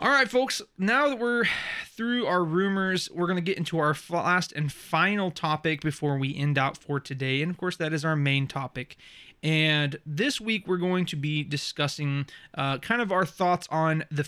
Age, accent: 20-39, American